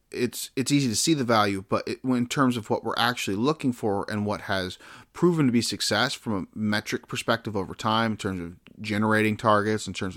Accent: American